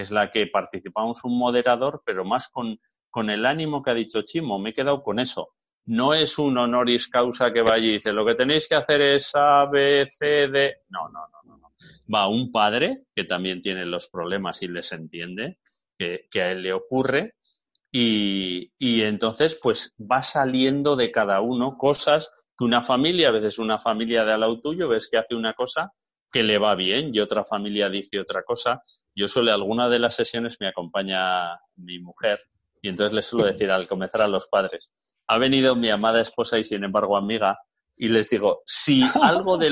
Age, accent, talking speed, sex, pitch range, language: 30-49, Spanish, 200 wpm, male, 105-145 Hz, Spanish